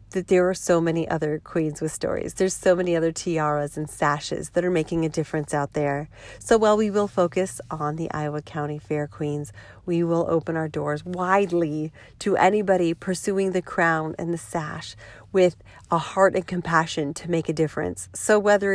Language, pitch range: English, 155-185 Hz